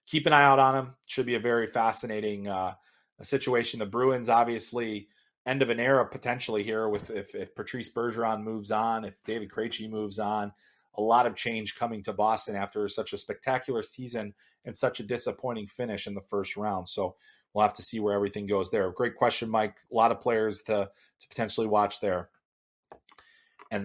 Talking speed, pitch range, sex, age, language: 195 wpm, 110-140 Hz, male, 30-49, English